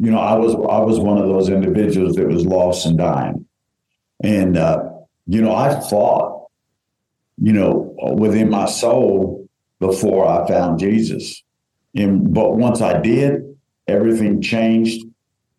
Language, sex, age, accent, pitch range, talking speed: English, male, 50-69, American, 95-115 Hz, 140 wpm